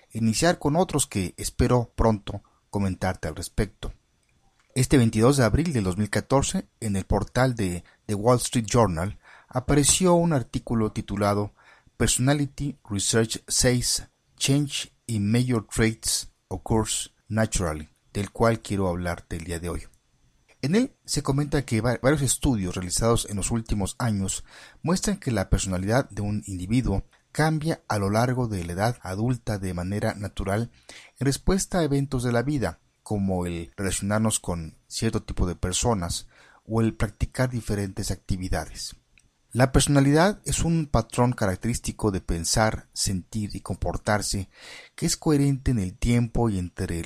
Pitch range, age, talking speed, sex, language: 95-125 Hz, 50-69, 145 wpm, male, Spanish